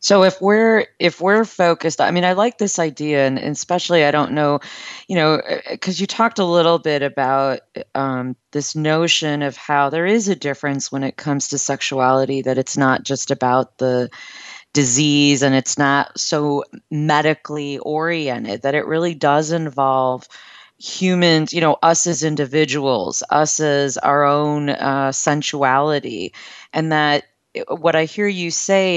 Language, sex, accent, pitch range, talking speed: English, female, American, 140-165 Hz, 160 wpm